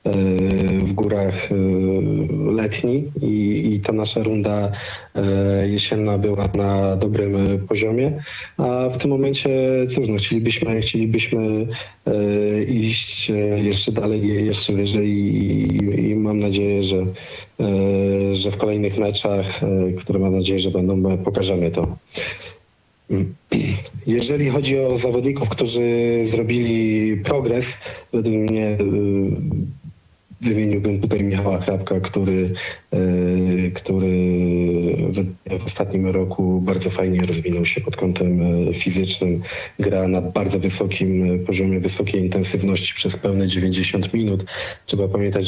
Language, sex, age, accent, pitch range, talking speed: Polish, male, 40-59, native, 95-105 Hz, 110 wpm